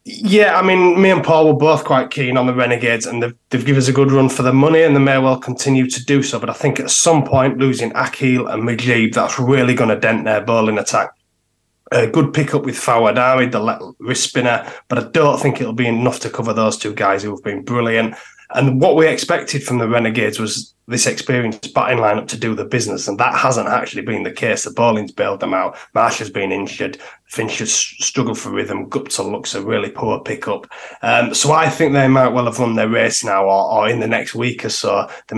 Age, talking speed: 20-39, 235 wpm